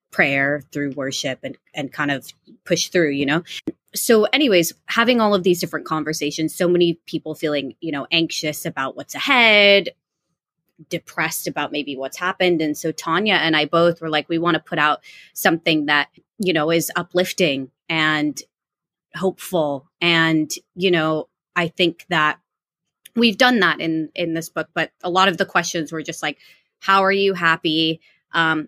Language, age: English, 20-39